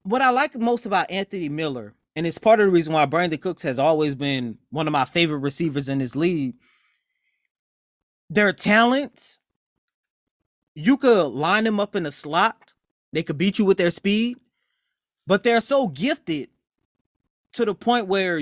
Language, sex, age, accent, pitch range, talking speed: English, male, 20-39, American, 155-210 Hz, 170 wpm